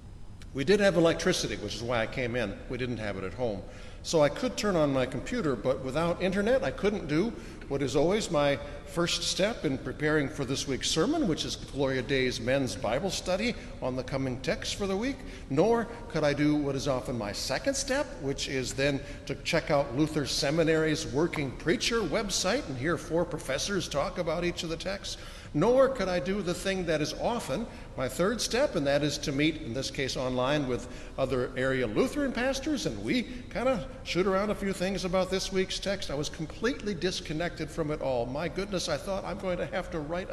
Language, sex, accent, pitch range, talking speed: English, male, American, 125-180 Hz, 210 wpm